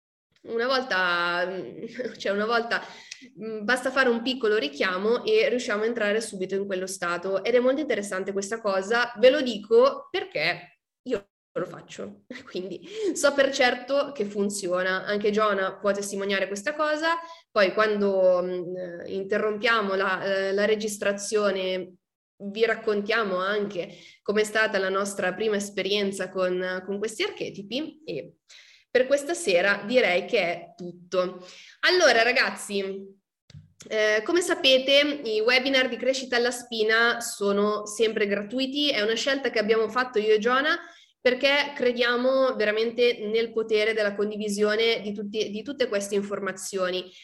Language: Italian